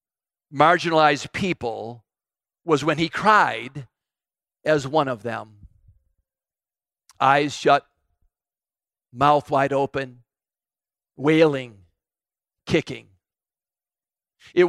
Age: 50-69